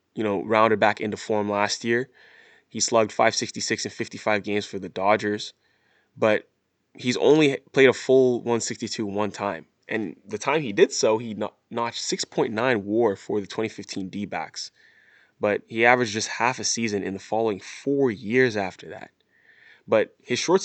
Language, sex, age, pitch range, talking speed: English, male, 20-39, 100-125 Hz, 165 wpm